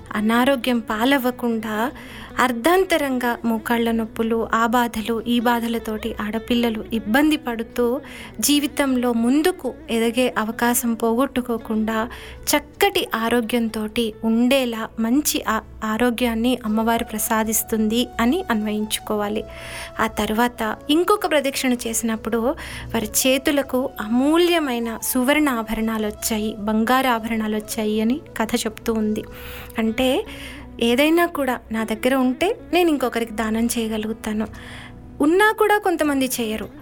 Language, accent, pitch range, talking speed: Telugu, native, 230-280 Hz, 90 wpm